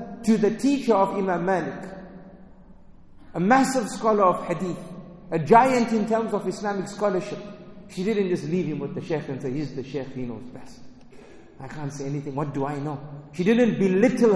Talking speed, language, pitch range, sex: 190 wpm, English, 155-205 Hz, male